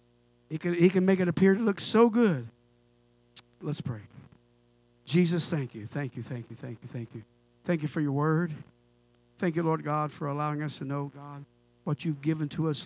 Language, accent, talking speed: English, American, 200 wpm